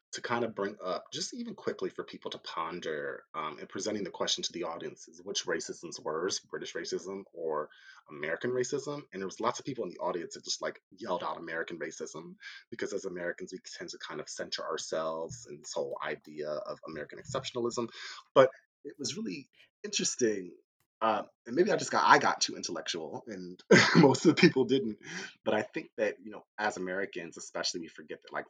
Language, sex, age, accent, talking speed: English, male, 30-49, American, 200 wpm